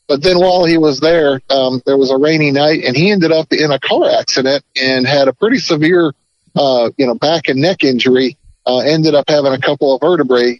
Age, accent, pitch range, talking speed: 50-69, American, 135-160 Hz, 225 wpm